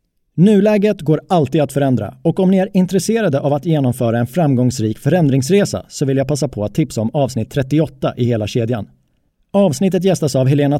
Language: Swedish